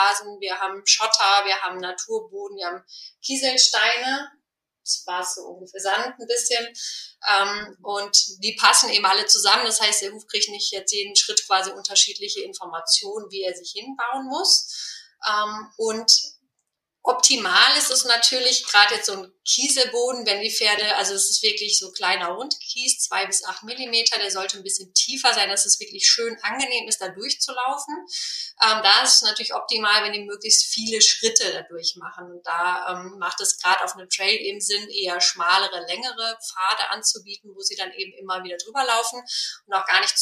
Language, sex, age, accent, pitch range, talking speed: German, female, 30-49, German, 195-245 Hz, 175 wpm